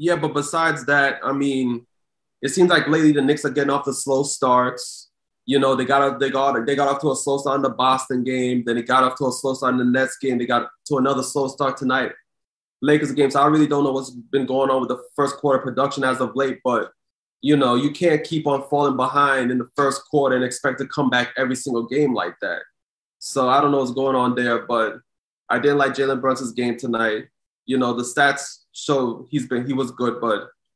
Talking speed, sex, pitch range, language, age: 240 wpm, male, 125-140 Hz, English, 20-39